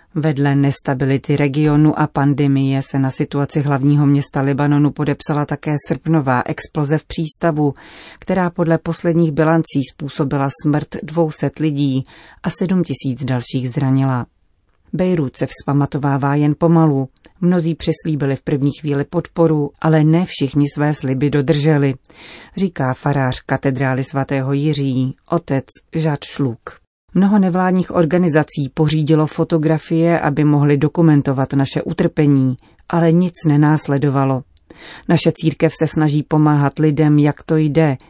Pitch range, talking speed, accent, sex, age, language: 140-165 Hz, 120 wpm, native, female, 40-59, Czech